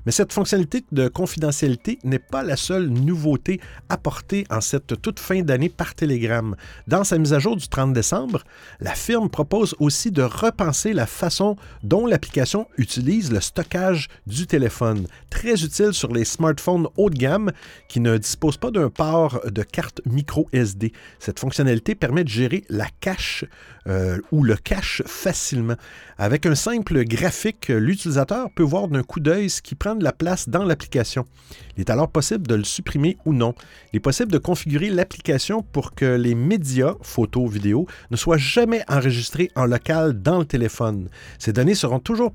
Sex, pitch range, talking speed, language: male, 120-180 Hz, 175 wpm, French